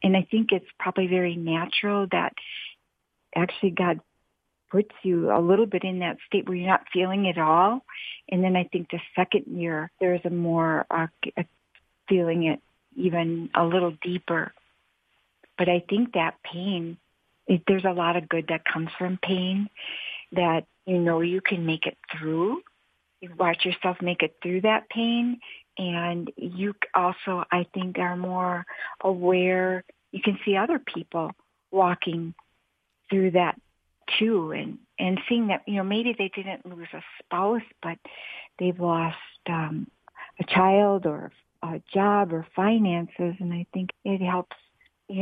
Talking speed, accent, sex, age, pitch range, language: 155 wpm, American, female, 50-69, 175-195 Hz, English